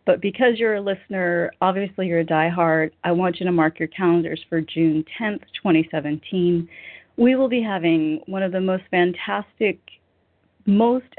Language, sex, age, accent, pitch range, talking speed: English, female, 40-59, American, 165-195 Hz, 160 wpm